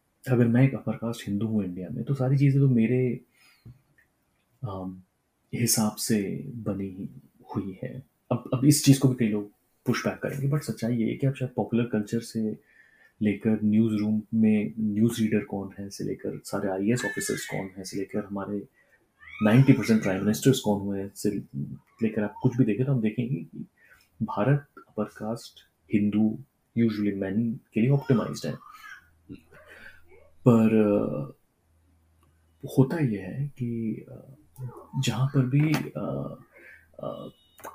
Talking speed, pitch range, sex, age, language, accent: 145 wpm, 105-125 Hz, male, 30-49, Hindi, native